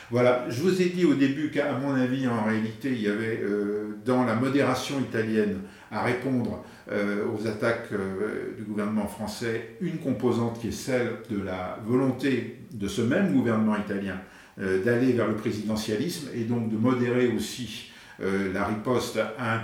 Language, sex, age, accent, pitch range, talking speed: French, male, 50-69, French, 105-125 Hz, 175 wpm